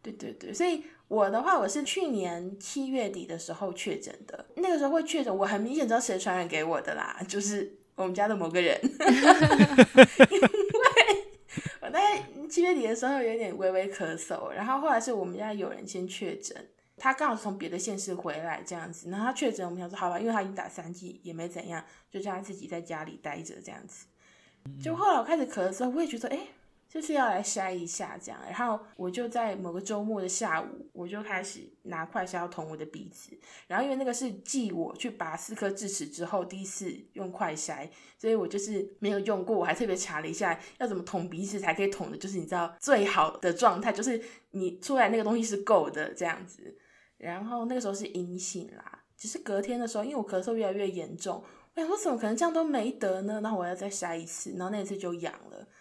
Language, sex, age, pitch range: Chinese, female, 20-39, 180-245 Hz